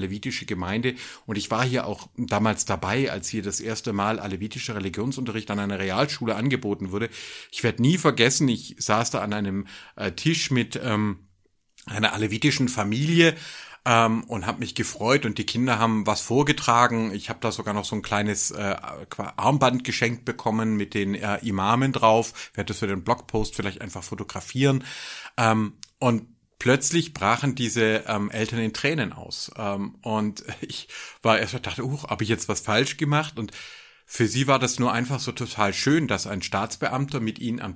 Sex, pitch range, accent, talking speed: male, 105-130 Hz, German, 180 wpm